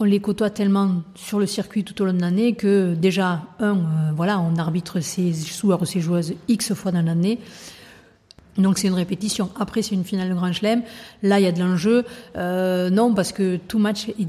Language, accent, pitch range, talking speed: French, French, 175-205 Hz, 215 wpm